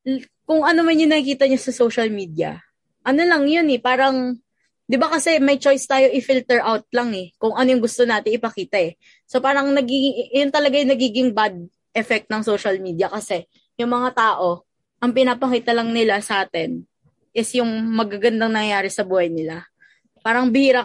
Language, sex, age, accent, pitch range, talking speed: Filipino, female, 20-39, native, 200-260 Hz, 175 wpm